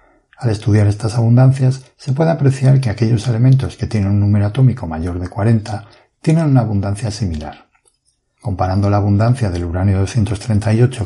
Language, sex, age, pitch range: Spanish, male, 60-79, 100-125 Hz